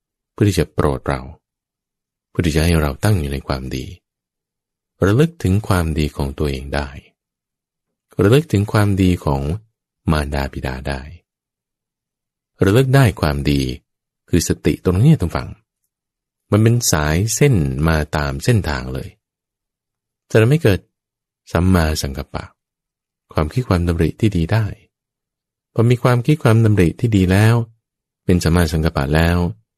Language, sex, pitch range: English, male, 80-115 Hz